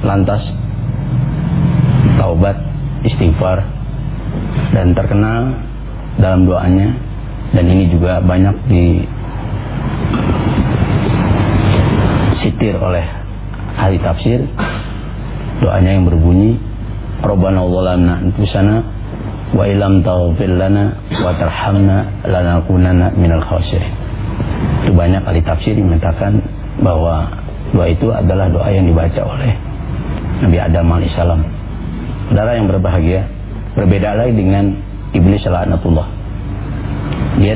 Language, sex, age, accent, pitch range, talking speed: English, male, 40-59, Indonesian, 90-110 Hz, 80 wpm